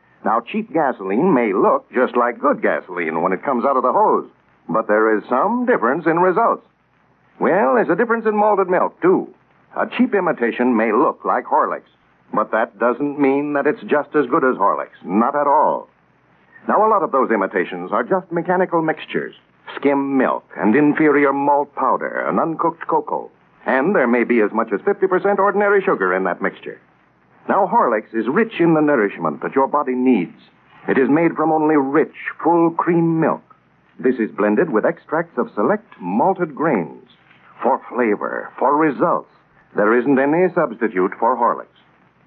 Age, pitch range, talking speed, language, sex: 60-79, 140-200 Hz, 175 wpm, English, male